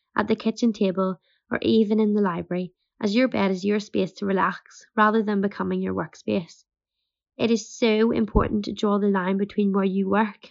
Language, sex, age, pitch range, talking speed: English, female, 20-39, 195-220 Hz, 195 wpm